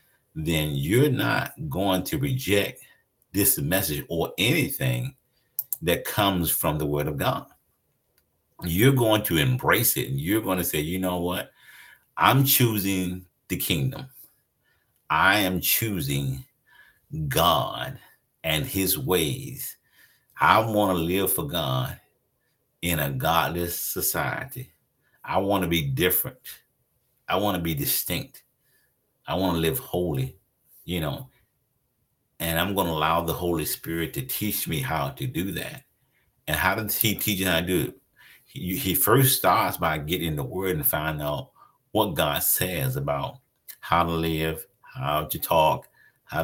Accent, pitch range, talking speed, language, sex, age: American, 80-125 Hz, 145 wpm, English, male, 50-69